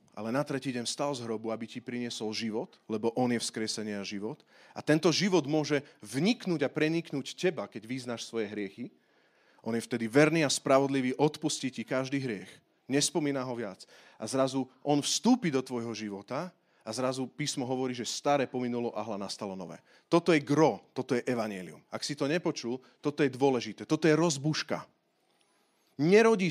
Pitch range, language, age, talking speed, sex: 120-170 Hz, Slovak, 30-49, 175 wpm, male